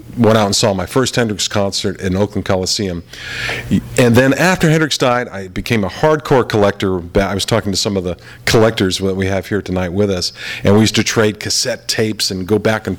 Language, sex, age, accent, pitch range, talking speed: English, male, 50-69, American, 95-120 Hz, 215 wpm